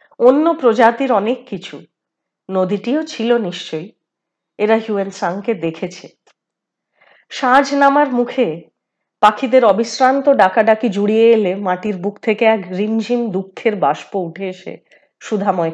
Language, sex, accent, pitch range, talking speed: Hindi, female, native, 195-245 Hz, 80 wpm